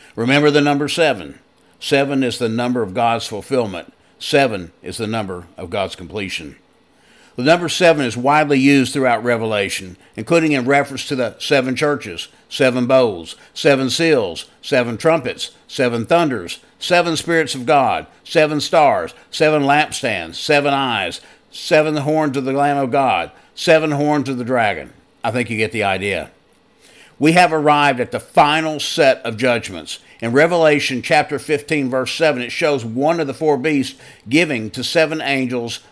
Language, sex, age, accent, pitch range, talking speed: English, male, 50-69, American, 120-155 Hz, 160 wpm